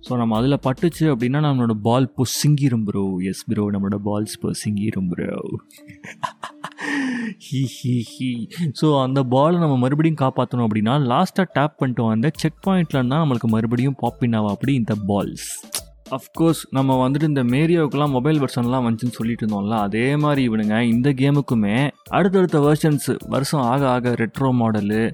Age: 20-39